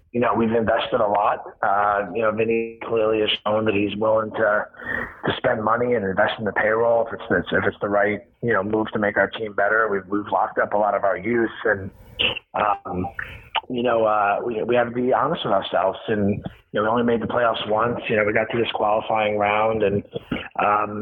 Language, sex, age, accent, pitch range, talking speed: English, male, 30-49, American, 105-115 Hz, 230 wpm